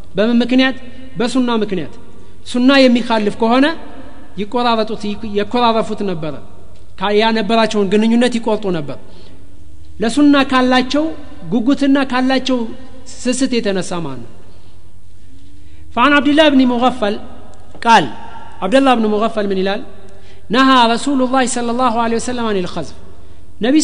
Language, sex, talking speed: Amharic, male, 95 wpm